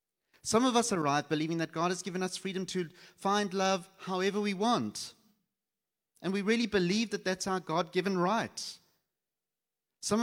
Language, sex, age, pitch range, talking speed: English, male, 30-49, 150-195 Hz, 160 wpm